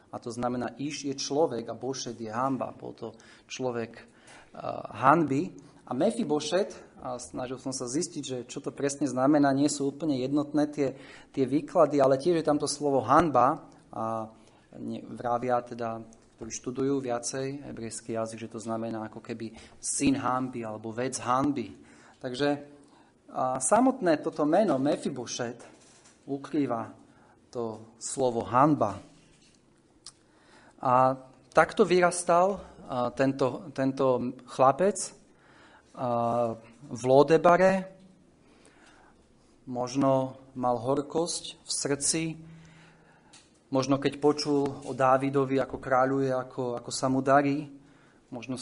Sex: male